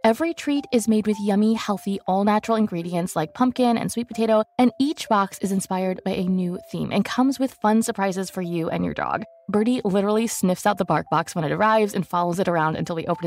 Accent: American